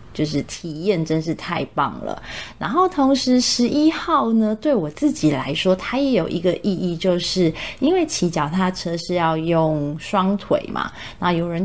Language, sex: Chinese, female